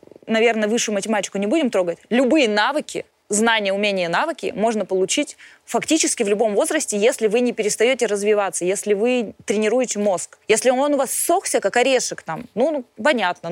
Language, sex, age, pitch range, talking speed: Russian, female, 20-39, 215-295 Hz, 160 wpm